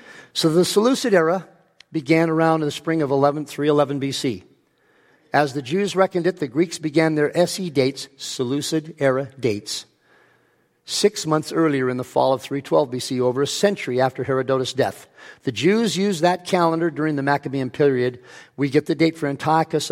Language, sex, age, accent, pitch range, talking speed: English, male, 50-69, American, 125-160 Hz, 170 wpm